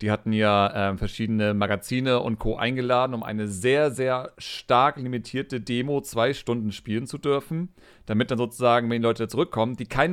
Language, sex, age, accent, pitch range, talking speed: German, male, 40-59, German, 115-135 Hz, 170 wpm